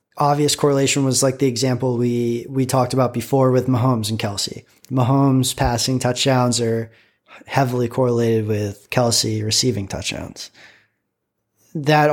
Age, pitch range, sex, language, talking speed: 20-39, 115-135 Hz, male, English, 130 wpm